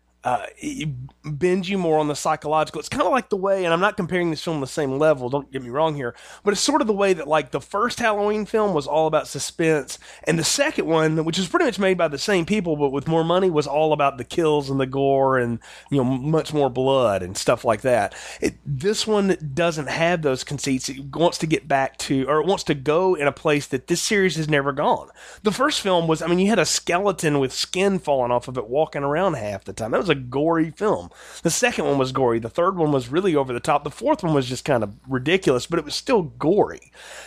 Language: English